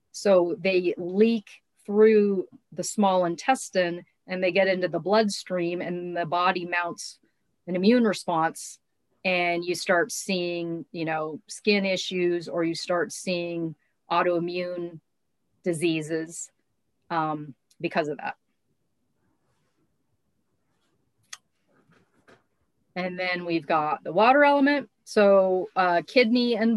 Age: 40-59